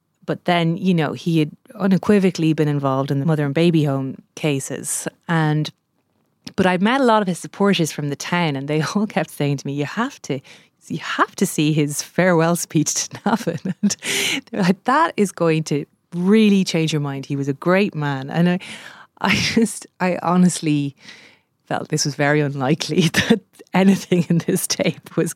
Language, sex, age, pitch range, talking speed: English, female, 30-49, 150-185 Hz, 190 wpm